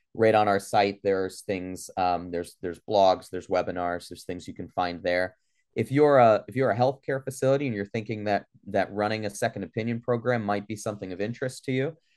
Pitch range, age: 100-115 Hz, 30-49